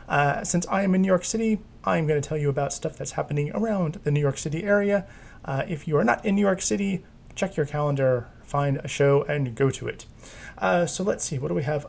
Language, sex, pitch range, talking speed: English, male, 140-175 Hz, 250 wpm